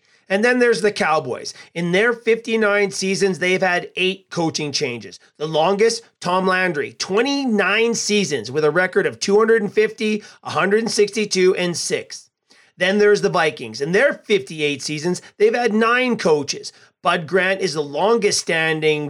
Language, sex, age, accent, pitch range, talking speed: English, male, 40-59, American, 170-215 Hz, 145 wpm